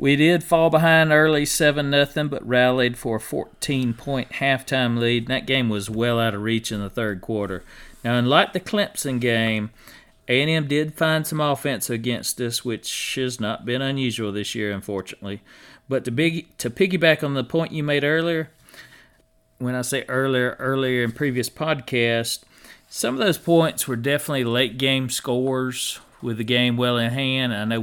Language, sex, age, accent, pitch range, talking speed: English, male, 40-59, American, 110-140 Hz, 175 wpm